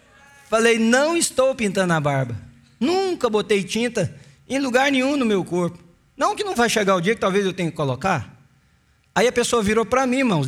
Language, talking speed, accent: English, 200 wpm, Brazilian